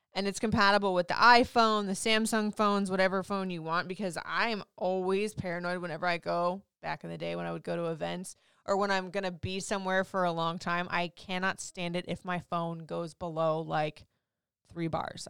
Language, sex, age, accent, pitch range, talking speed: English, female, 20-39, American, 170-210 Hz, 210 wpm